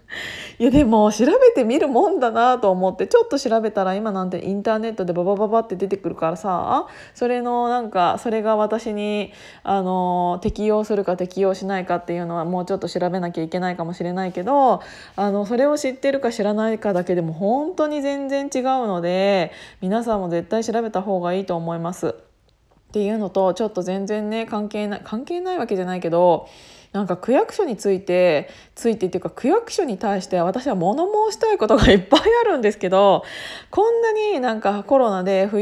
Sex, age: female, 20-39